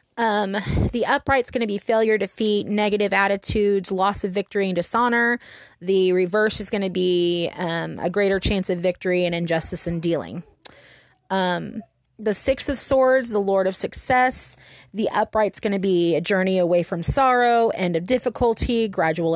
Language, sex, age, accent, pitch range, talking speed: English, female, 30-49, American, 195-245 Hz, 165 wpm